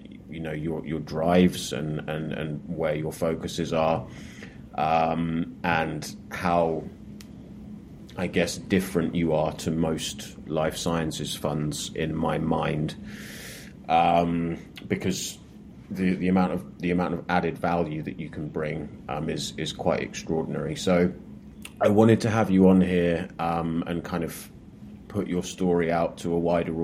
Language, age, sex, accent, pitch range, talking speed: English, 30-49, male, British, 80-95 Hz, 150 wpm